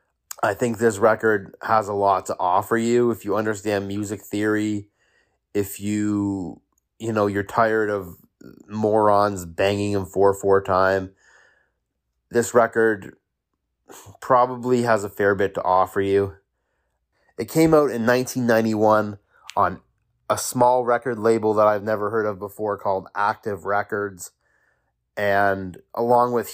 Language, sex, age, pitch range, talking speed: English, male, 30-49, 100-115 Hz, 135 wpm